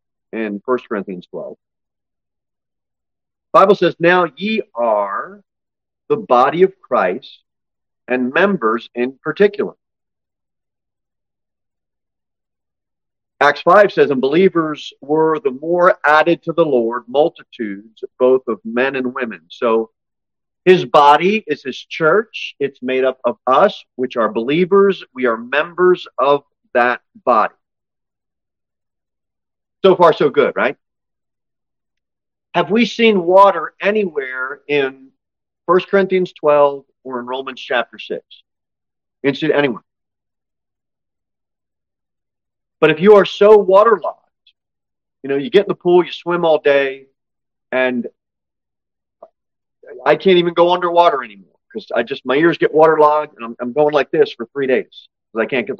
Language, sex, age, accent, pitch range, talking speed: English, male, 50-69, American, 120-185 Hz, 130 wpm